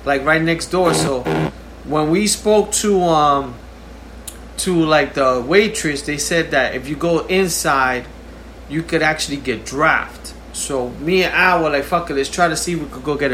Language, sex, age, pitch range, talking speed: English, male, 30-49, 140-175 Hz, 195 wpm